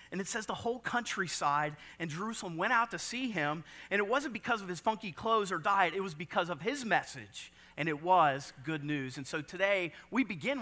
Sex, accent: male, American